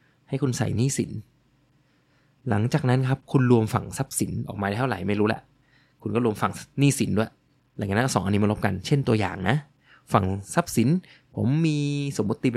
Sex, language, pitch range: male, Thai, 105-135 Hz